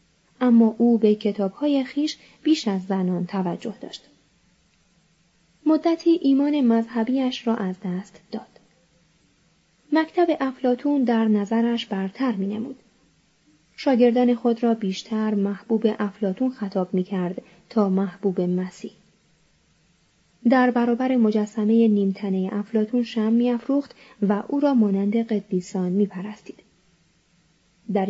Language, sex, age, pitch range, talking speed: Persian, female, 30-49, 195-250 Hz, 105 wpm